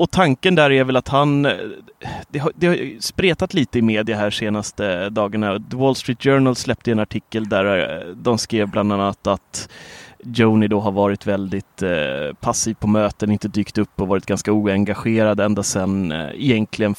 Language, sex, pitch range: Swedish, male, 100-120 Hz